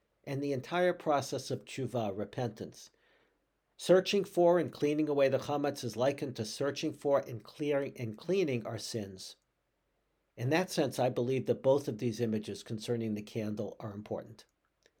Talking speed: 160 wpm